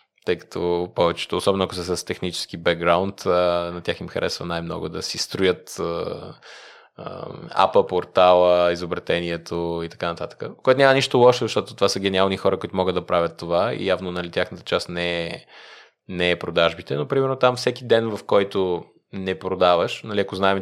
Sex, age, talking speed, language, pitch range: male, 20-39, 165 wpm, Bulgarian, 90-100 Hz